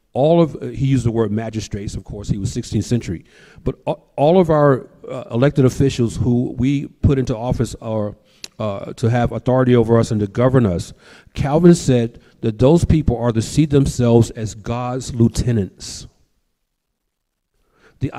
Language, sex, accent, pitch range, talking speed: English, male, American, 115-145 Hz, 165 wpm